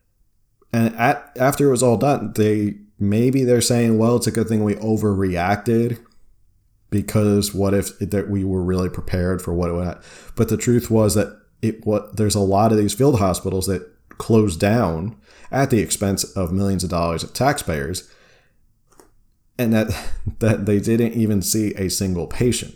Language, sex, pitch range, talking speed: English, male, 95-110 Hz, 175 wpm